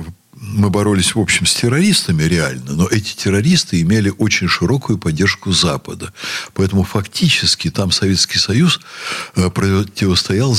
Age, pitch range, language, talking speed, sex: 60-79, 90-135 Hz, Russian, 120 wpm, male